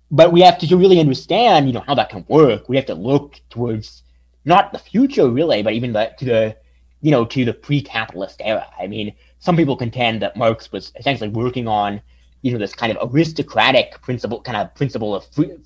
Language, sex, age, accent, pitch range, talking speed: English, male, 30-49, American, 100-145 Hz, 215 wpm